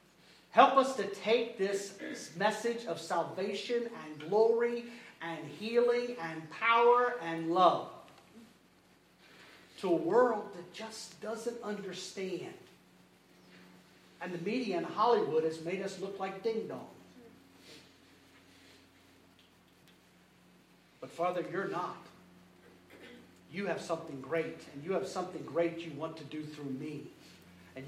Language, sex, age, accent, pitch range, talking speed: English, male, 50-69, American, 155-205 Hz, 120 wpm